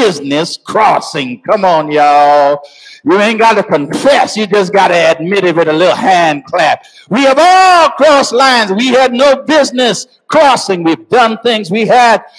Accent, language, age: American, English, 60-79